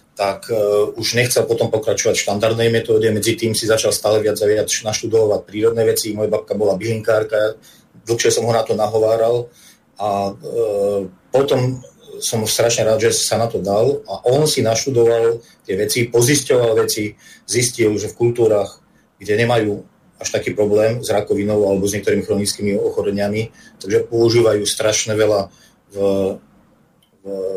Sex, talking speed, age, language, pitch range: male, 150 wpm, 30-49, Slovak, 105-125 Hz